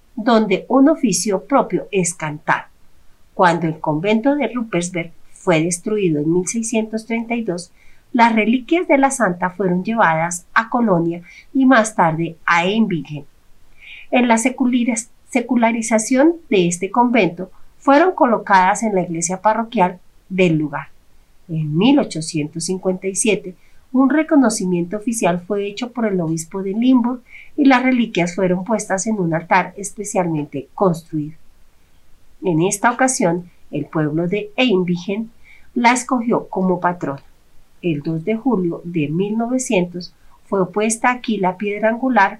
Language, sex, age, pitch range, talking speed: Spanish, female, 40-59, 175-235 Hz, 125 wpm